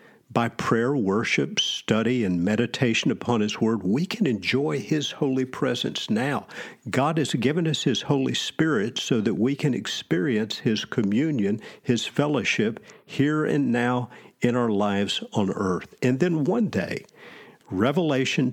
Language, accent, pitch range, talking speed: English, American, 100-145 Hz, 145 wpm